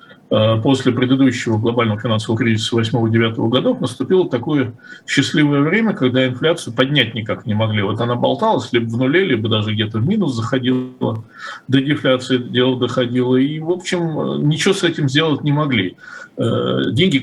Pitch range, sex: 120-160 Hz, male